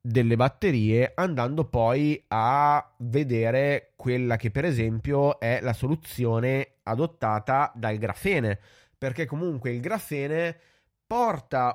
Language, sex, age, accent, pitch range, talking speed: Italian, male, 30-49, native, 120-150 Hz, 105 wpm